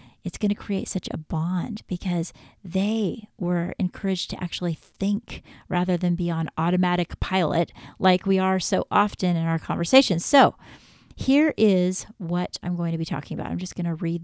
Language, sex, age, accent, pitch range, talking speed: English, female, 40-59, American, 175-220 Hz, 180 wpm